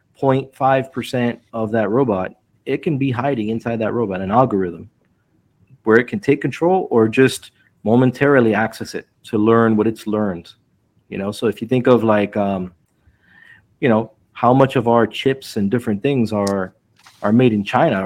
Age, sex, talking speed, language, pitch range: 30-49, male, 175 wpm, English, 105-130 Hz